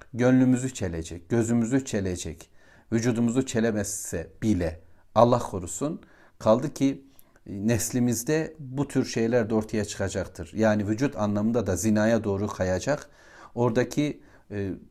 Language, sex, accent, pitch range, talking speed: Turkish, male, native, 100-125 Hz, 105 wpm